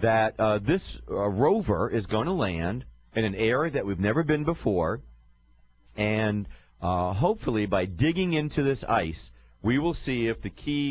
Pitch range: 85-115 Hz